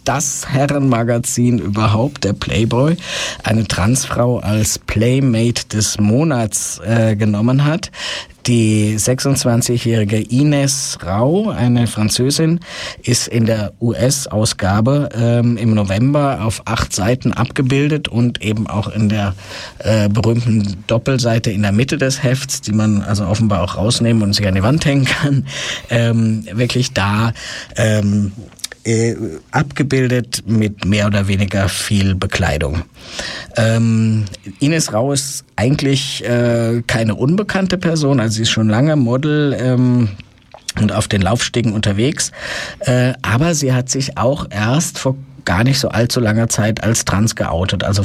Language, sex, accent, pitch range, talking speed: German, male, German, 105-130 Hz, 135 wpm